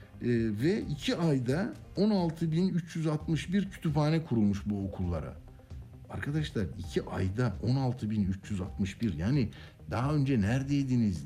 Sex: male